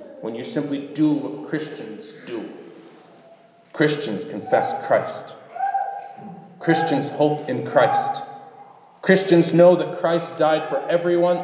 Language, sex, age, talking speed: English, male, 40-59, 110 wpm